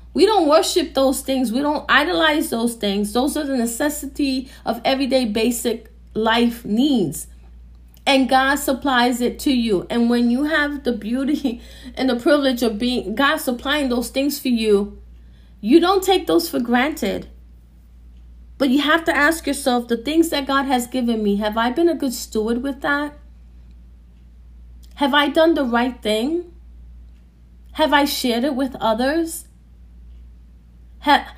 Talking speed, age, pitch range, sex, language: 155 wpm, 30-49, 205-310 Hz, female, English